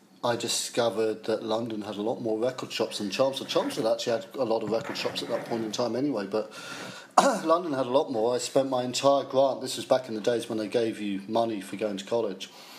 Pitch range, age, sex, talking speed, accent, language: 105-120 Hz, 40-59, male, 245 wpm, British, English